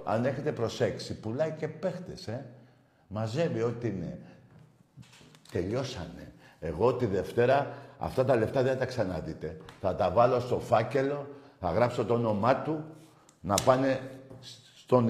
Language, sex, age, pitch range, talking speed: Greek, male, 50-69, 120-185 Hz, 135 wpm